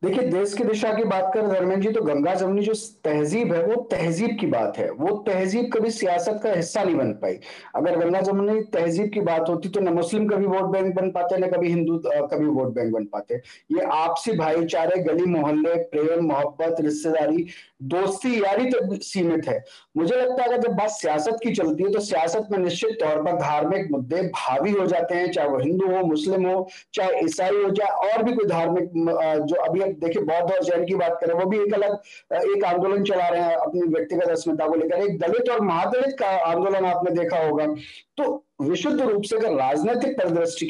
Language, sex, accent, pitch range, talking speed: Hindi, male, native, 160-205 Hz, 200 wpm